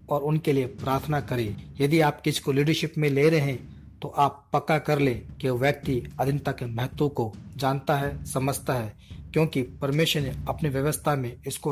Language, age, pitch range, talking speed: Hindi, 40-59, 130-145 Hz, 185 wpm